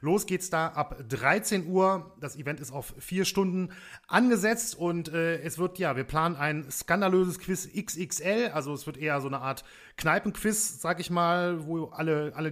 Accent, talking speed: German, 180 wpm